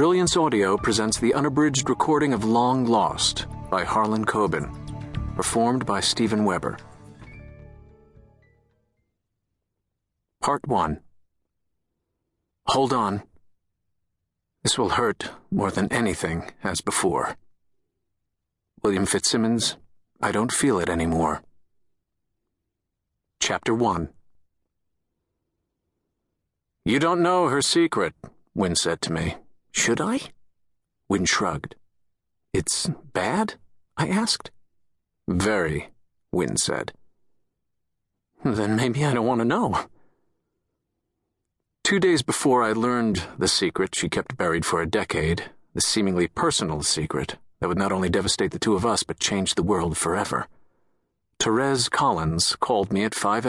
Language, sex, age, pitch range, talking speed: English, male, 50-69, 85-115 Hz, 115 wpm